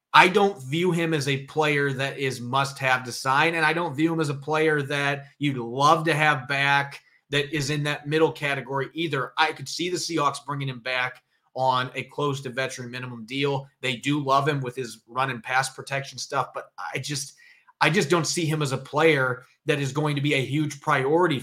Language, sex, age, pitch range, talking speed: English, male, 30-49, 130-150 Hz, 215 wpm